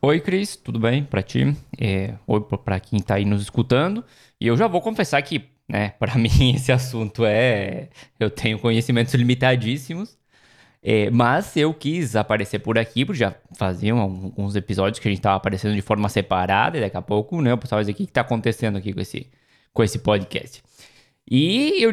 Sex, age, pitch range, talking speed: male, 20-39, 110-140 Hz, 195 wpm